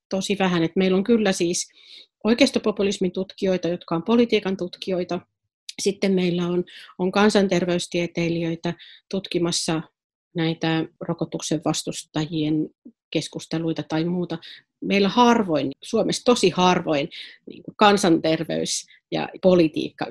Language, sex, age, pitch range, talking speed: Finnish, female, 40-59, 165-195 Hz, 100 wpm